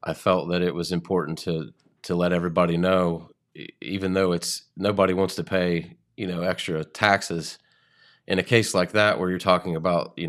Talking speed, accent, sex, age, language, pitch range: 185 wpm, American, male, 30-49, English, 85-95 Hz